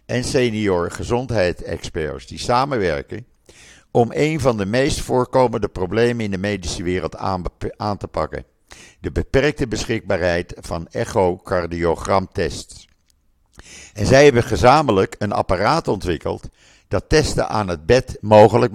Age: 50-69